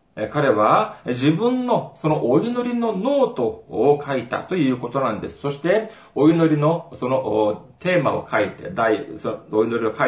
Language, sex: Japanese, male